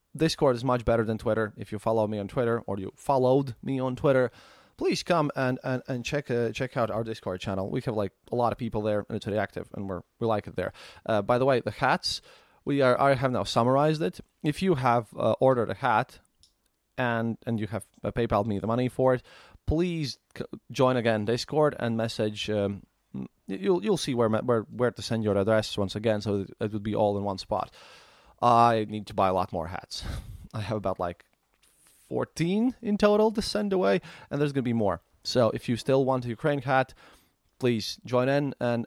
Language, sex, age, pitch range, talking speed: English, male, 20-39, 105-135 Hz, 220 wpm